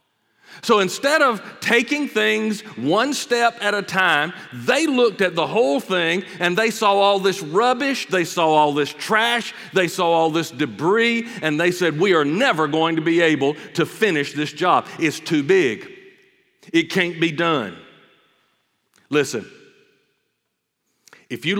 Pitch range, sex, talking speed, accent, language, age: 125-185 Hz, male, 155 wpm, American, English, 40-59